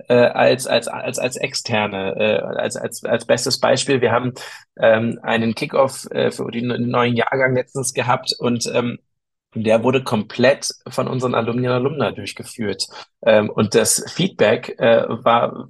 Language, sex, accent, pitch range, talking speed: German, male, German, 110-125 Hz, 150 wpm